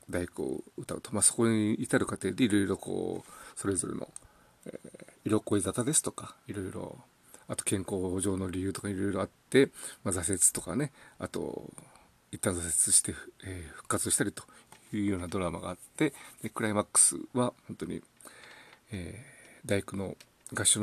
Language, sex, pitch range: Japanese, male, 95-125 Hz